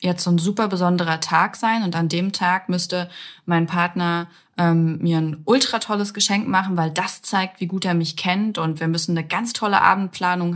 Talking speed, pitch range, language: 205 wpm, 165-195 Hz, German